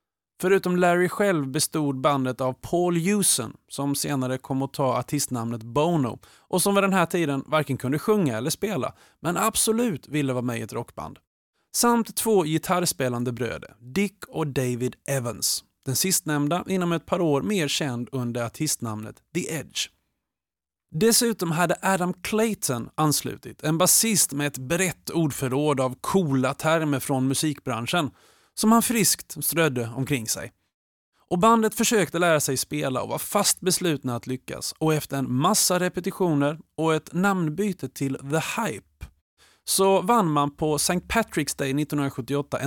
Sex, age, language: male, 30-49, Swedish